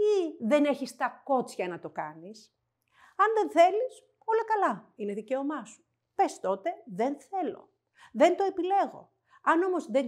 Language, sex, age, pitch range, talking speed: Greek, female, 50-69, 200-310 Hz, 155 wpm